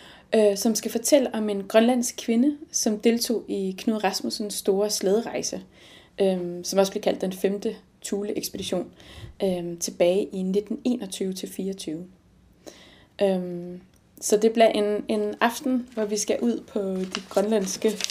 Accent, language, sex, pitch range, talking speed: native, Danish, female, 195-240 Hz, 125 wpm